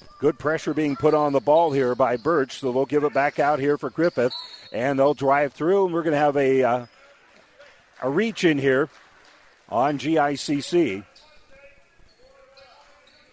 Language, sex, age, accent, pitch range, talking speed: English, male, 50-69, American, 135-170 Hz, 160 wpm